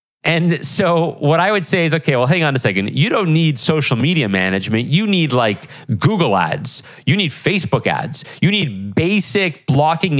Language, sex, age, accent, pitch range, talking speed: English, male, 30-49, American, 135-175 Hz, 190 wpm